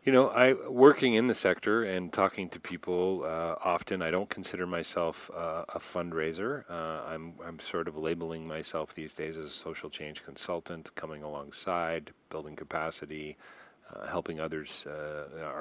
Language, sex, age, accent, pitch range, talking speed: English, male, 40-59, American, 80-100 Hz, 160 wpm